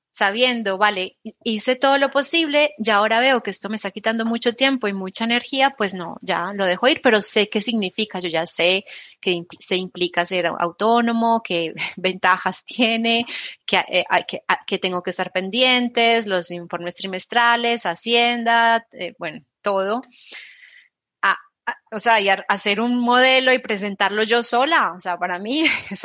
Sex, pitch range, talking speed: female, 195-245 Hz, 160 wpm